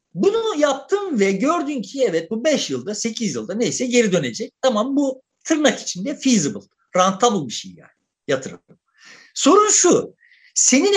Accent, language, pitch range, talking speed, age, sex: native, Turkish, 200-305 Hz, 150 wpm, 50-69, male